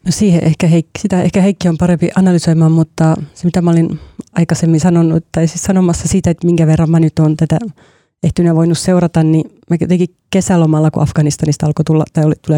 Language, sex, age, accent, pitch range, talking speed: Finnish, female, 30-49, native, 155-175 Hz, 200 wpm